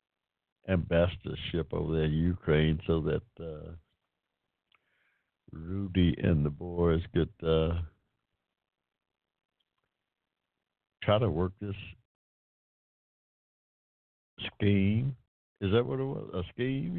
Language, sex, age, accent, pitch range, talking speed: English, male, 60-79, American, 80-95 Hz, 90 wpm